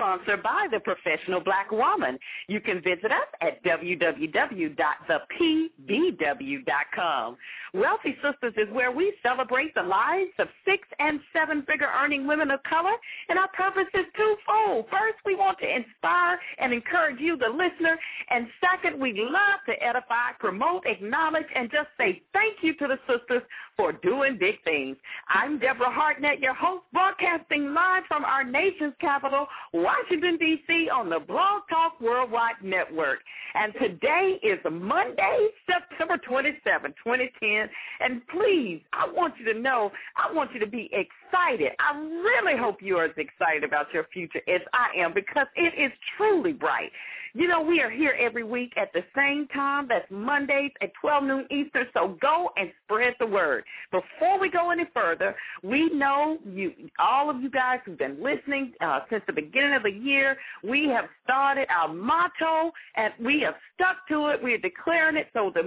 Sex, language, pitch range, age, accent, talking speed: female, English, 245-350 Hz, 50-69, American, 165 wpm